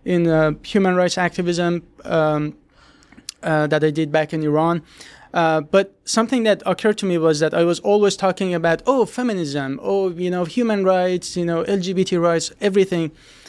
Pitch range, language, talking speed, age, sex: 160-190 Hz, English, 175 wpm, 20-39, male